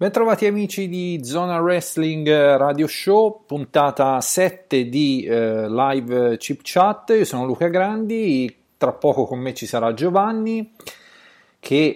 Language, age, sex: Italian, 30-49, male